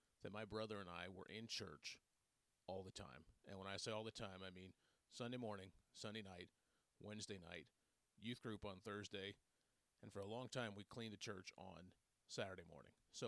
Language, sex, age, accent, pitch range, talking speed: English, male, 30-49, American, 95-115 Hz, 195 wpm